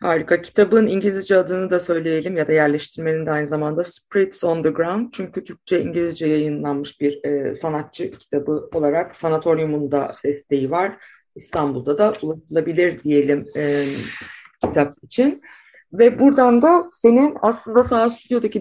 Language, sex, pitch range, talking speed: Turkish, female, 155-205 Hz, 140 wpm